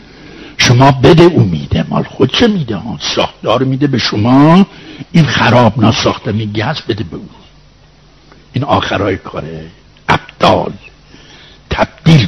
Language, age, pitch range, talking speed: Persian, 60-79, 105-140 Hz, 115 wpm